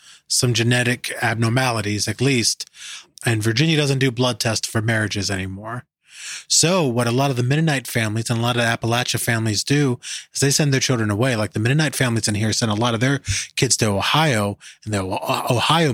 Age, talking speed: 20-39, 200 wpm